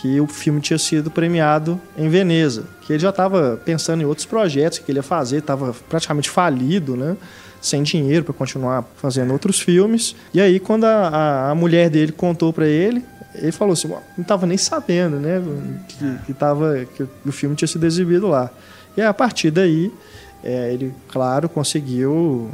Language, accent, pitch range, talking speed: Portuguese, Brazilian, 140-180 Hz, 170 wpm